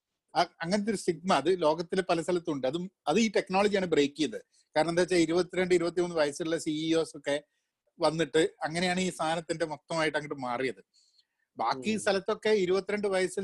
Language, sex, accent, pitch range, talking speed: Malayalam, male, native, 160-225 Hz, 145 wpm